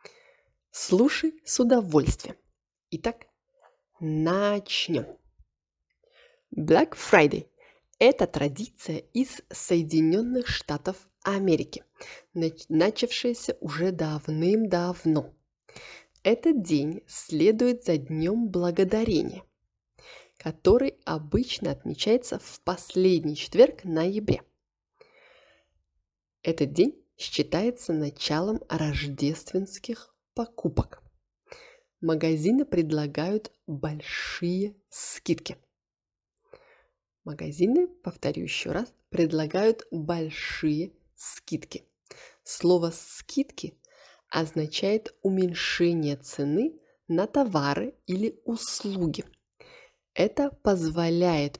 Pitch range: 160-245 Hz